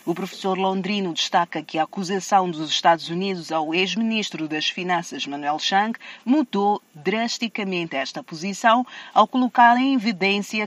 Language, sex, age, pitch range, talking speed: Portuguese, female, 40-59, 165-220 Hz, 135 wpm